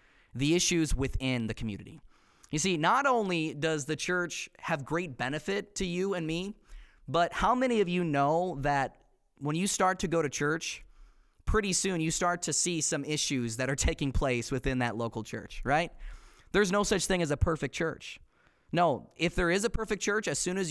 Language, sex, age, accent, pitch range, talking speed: English, male, 20-39, American, 135-180 Hz, 195 wpm